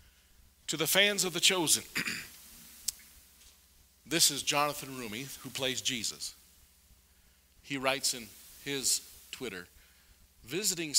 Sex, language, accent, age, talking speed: male, English, American, 50-69, 105 wpm